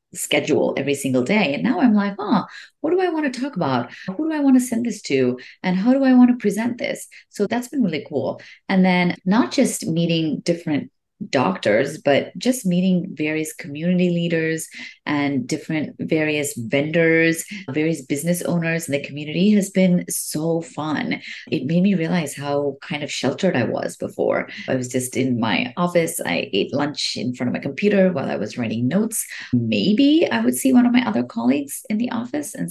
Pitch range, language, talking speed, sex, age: 140-205 Hz, English, 195 wpm, female, 30-49